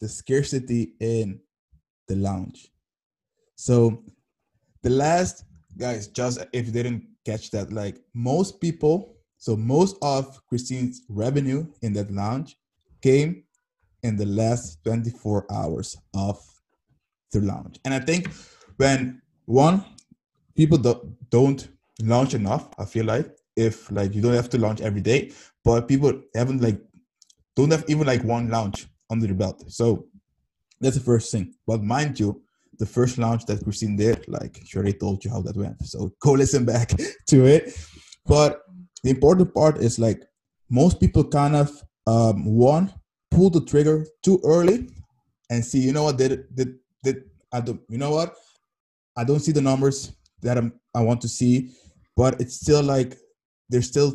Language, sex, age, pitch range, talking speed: English, male, 20-39, 105-140 Hz, 160 wpm